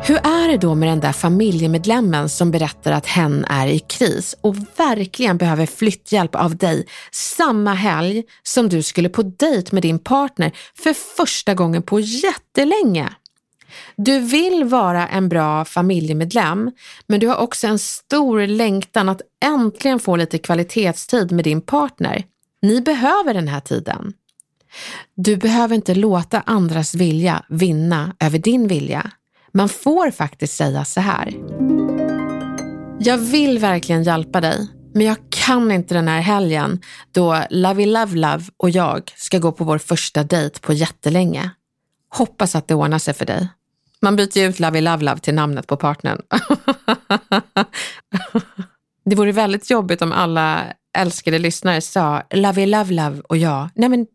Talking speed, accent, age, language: 150 wpm, native, 30-49, Swedish